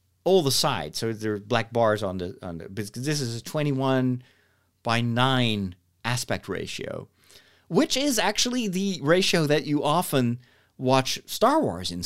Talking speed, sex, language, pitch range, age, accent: 165 wpm, male, English, 100-140 Hz, 40-59, American